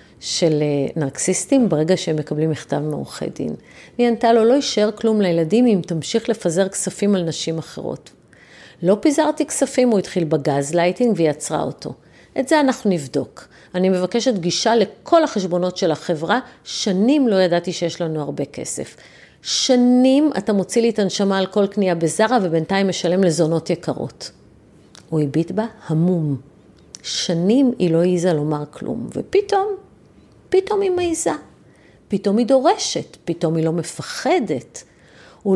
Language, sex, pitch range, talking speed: Hebrew, female, 165-210 Hz, 145 wpm